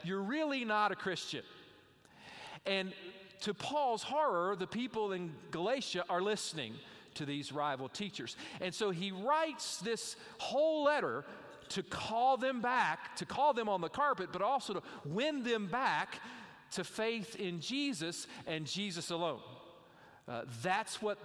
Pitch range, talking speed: 170-240 Hz, 145 wpm